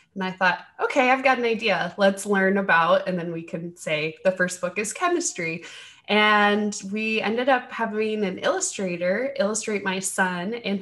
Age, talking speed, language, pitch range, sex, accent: 20-39, 180 wpm, English, 180-230 Hz, female, American